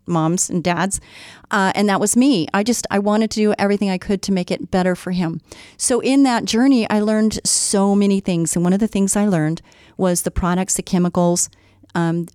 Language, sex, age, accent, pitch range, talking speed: English, female, 40-59, American, 170-210 Hz, 220 wpm